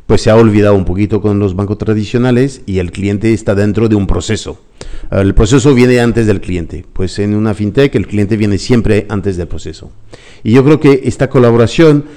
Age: 50-69